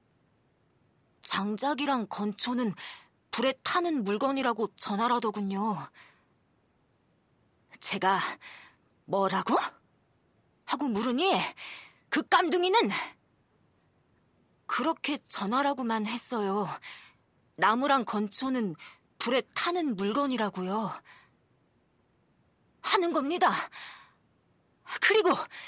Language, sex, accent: Korean, female, native